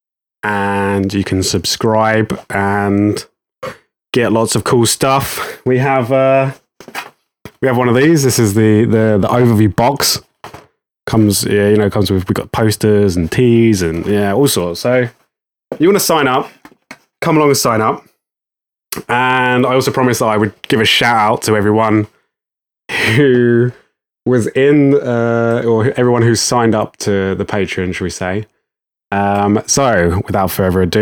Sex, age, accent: male, 20-39, British